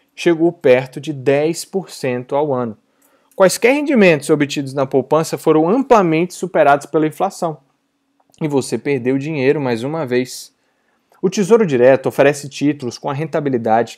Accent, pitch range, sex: Brazilian, 135-180 Hz, male